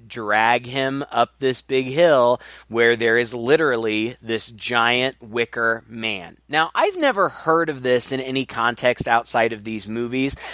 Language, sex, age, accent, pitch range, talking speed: English, male, 20-39, American, 110-135 Hz, 155 wpm